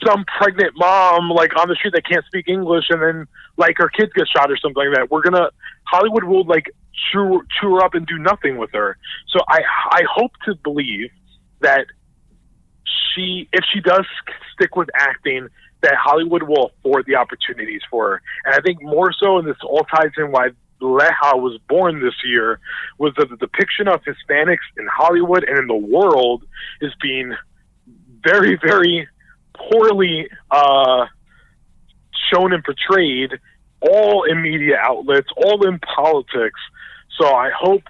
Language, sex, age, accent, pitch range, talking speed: English, male, 30-49, American, 145-185 Hz, 165 wpm